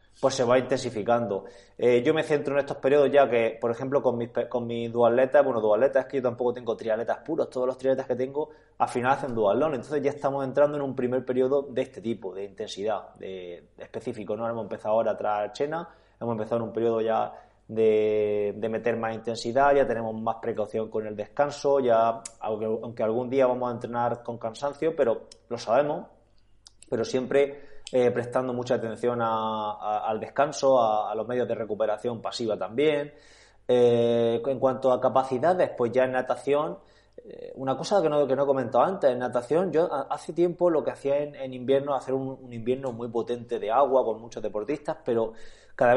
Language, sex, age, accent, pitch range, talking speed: Spanish, male, 20-39, Spanish, 115-140 Hz, 200 wpm